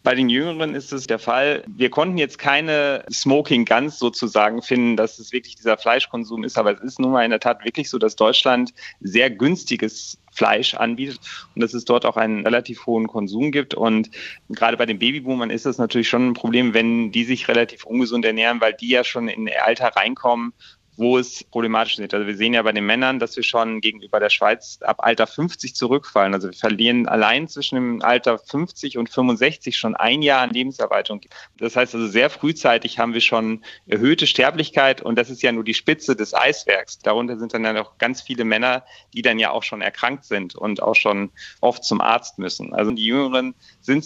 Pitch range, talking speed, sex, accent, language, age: 115-130 Hz, 205 wpm, male, German, German, 30-49